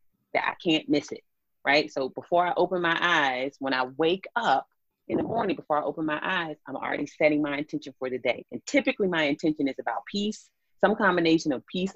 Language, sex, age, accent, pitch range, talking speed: English, female, 30-49, American, 130-165 Hz, 215 wpm